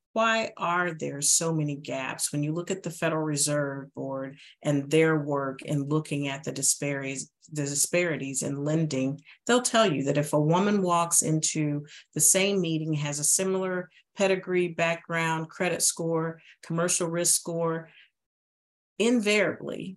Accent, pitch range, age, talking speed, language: American, 145-170 Hz, 40-59, 145 wpm, English